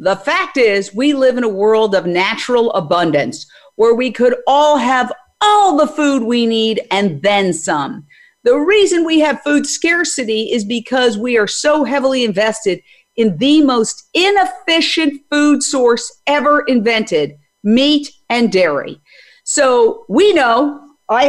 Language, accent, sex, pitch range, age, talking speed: English, American, female, 220-290 Hz, 50-69, 145 wpm